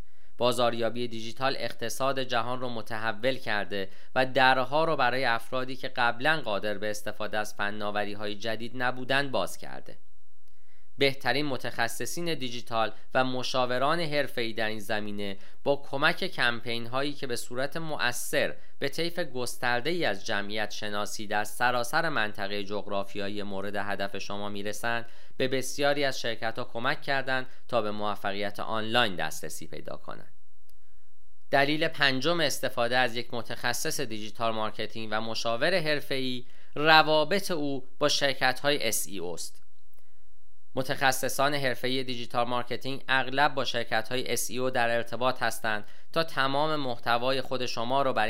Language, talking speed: Persian, 130 wpm